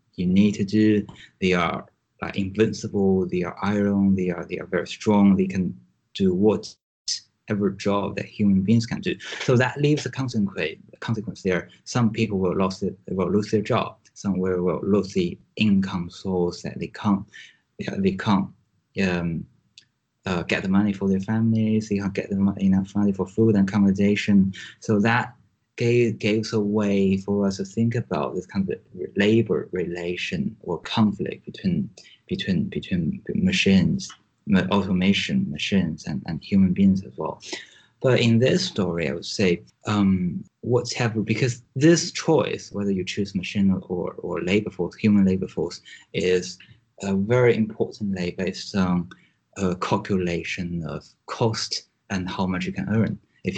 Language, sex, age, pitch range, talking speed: English, male, 20-39, 95-115 Hz, 165 wpm